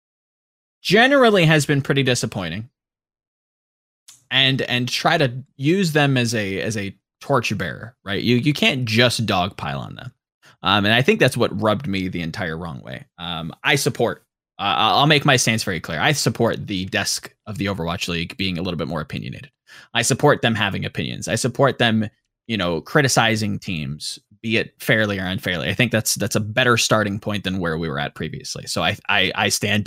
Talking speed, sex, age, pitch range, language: 195 wpm, male, 20-39, 100-130 Hz, English